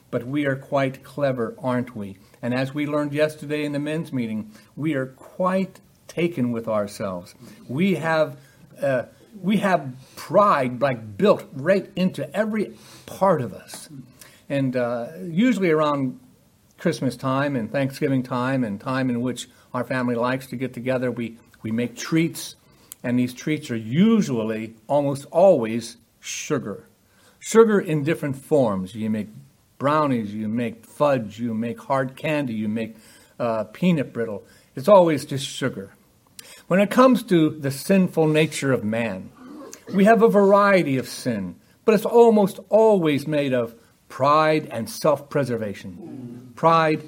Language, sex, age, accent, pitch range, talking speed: English, male, 60-79, American, 120-175 Hz, 145 wpm